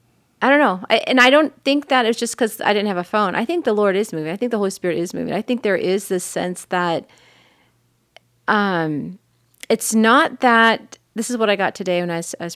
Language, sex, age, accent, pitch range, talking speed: English, female, 40-59, American, 180-225 Hz, 240 wpm